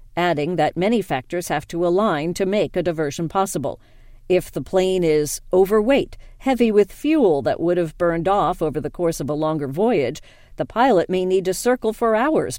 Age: 50-69